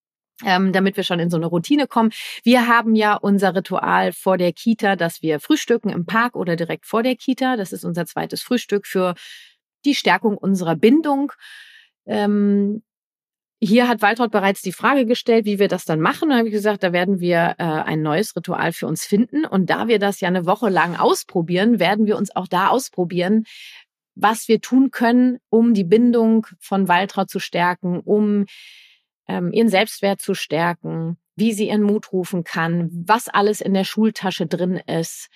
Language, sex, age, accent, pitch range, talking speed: German, female, 30-49, German, 175-220 Hz, 185 wpm